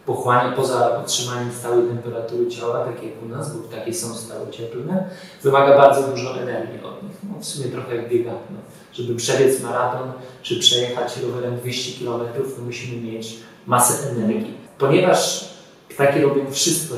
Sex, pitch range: male, 115-130 Hz